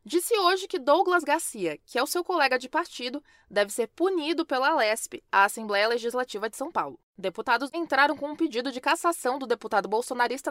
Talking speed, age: 190 wpm, 20-39